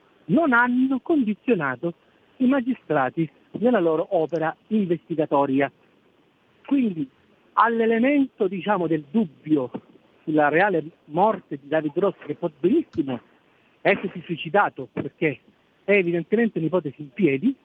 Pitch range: 155-230 Hz